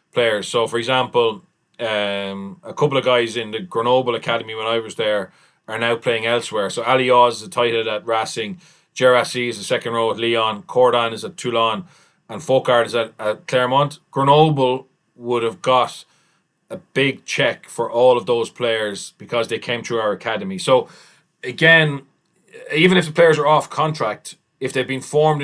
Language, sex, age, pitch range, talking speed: English, male, 30-49, 115-150 Hz, 180 wpm